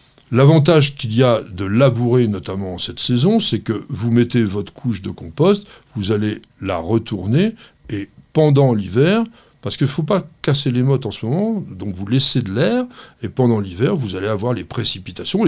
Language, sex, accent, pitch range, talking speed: French, male, French, 110-155 Hz, 190 wpm